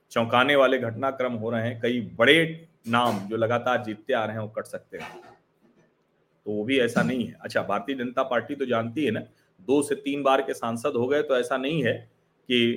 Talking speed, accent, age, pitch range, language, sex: 215 wpm, native, 40-59, 120-160 Hz, Hindi, male